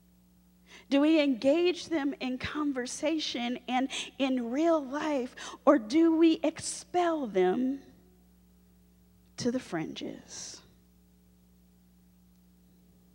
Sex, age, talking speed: female, 40-59, 80 wpm